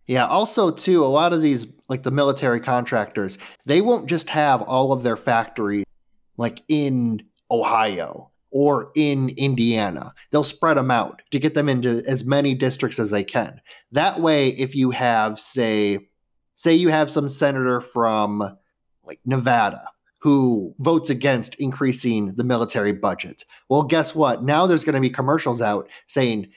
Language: English